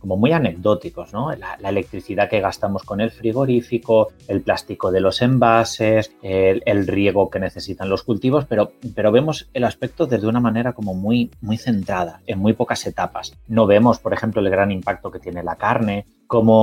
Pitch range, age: 95-115 Hz, 30-49